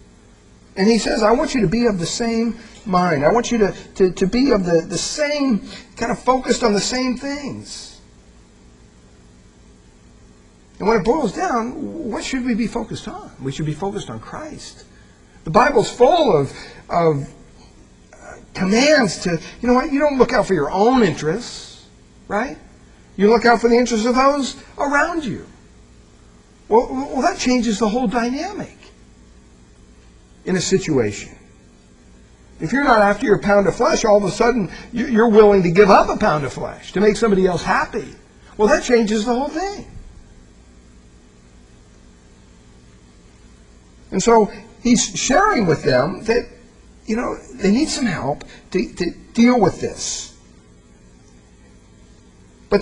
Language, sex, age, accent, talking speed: English, male, 50-69, American, 155 wpm